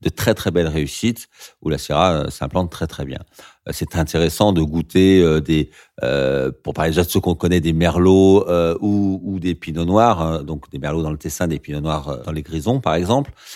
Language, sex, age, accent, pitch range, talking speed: French, male, 50-69, French, 80-95 Hz, 215 wpm